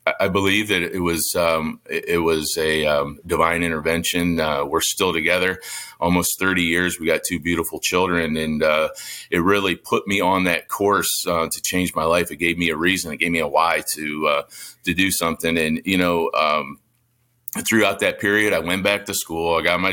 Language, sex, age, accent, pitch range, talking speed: English, male, 30-49, American, 80-95 Hz, 205 wpm